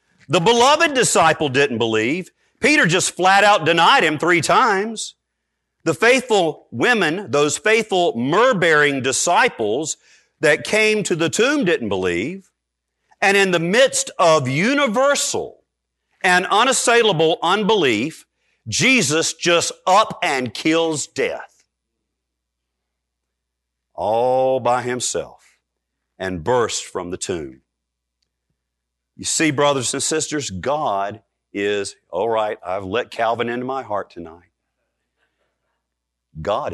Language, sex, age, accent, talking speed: English, male, 50-69, American, 110 wpm